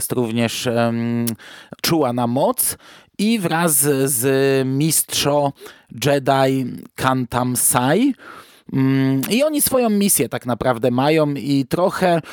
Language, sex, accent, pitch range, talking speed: Polish, male, native, 125-150 Hz, 100 wpm